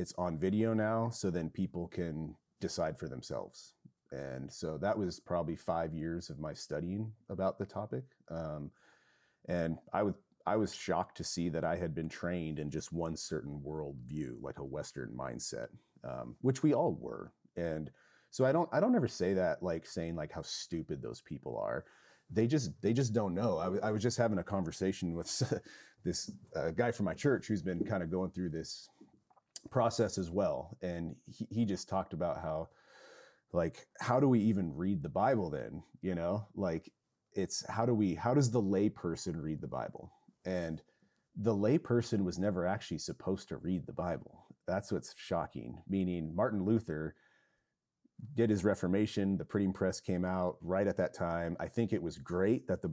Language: English